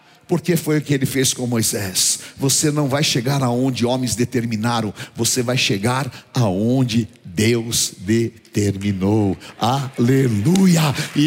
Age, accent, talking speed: 60-79, Brazilian, 120 wpm